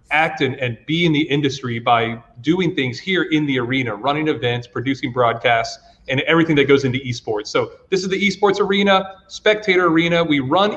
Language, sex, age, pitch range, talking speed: English, male, 30-49, 130-175 Hz, 190 wpm